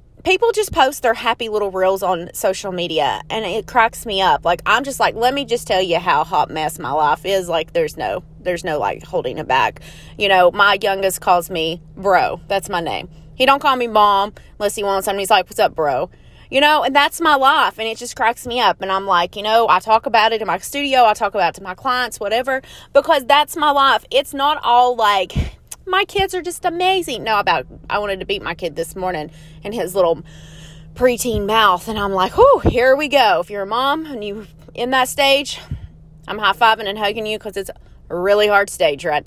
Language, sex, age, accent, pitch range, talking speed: English, female, 20-39, American, 185-275 Hz, 230 wpm